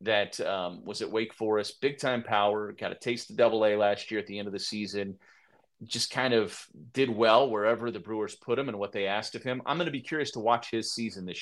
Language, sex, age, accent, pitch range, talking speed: English, male, 30-49, American, 105-130 Hz, 260 wpm